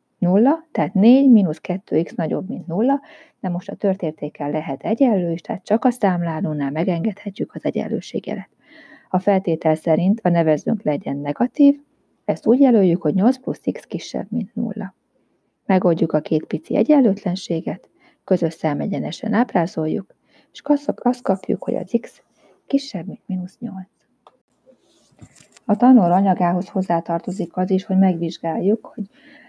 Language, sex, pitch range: Hungarian, female, 170-230 Hz